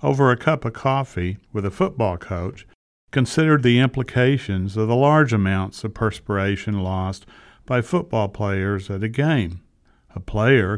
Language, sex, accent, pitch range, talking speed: English, male, American, 100-120 Hz, 150 wpm